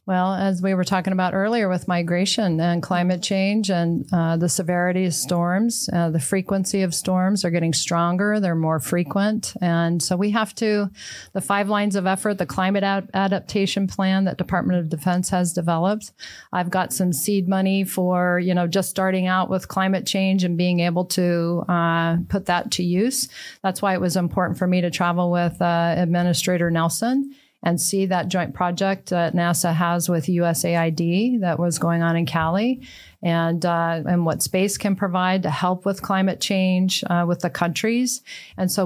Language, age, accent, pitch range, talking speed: English, 40-59, American, 175-195 Hz, 185 wpm